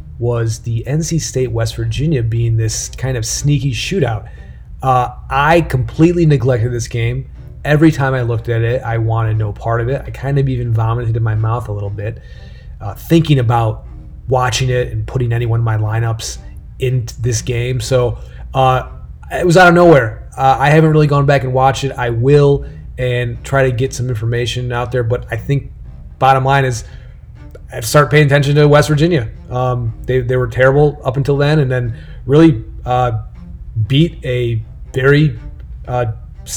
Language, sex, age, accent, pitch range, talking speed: English, male, 30-49, American, 115-145 Hz, 180 wpm